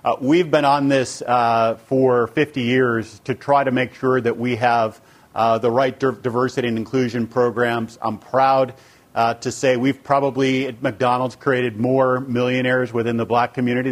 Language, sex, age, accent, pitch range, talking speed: English, male, 40-59, American, 120-135 Hz, 175 wpm